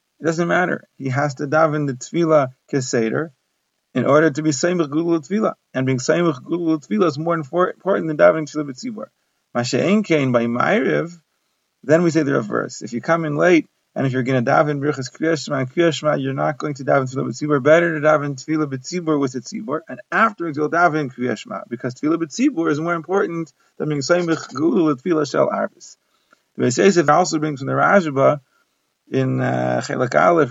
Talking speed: 195 wpm